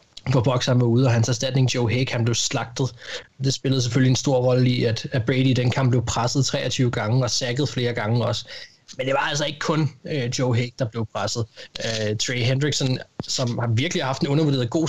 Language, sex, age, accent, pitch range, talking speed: Danish, male, 20-39, native, 125-150 Hz, 220 wpm